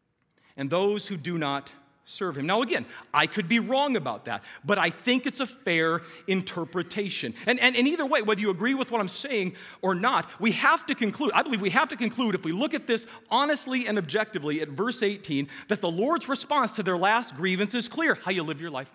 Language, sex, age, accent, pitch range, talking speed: English, male, 40-59, American, 175-235 Hz, 230 wpm